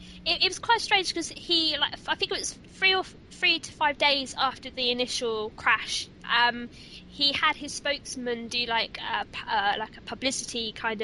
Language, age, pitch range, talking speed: English, 20-39, 220-270 Hz, 195 wpm